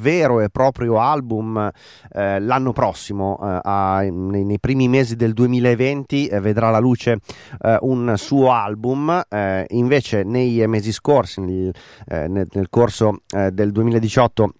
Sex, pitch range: male, 100-125 Hz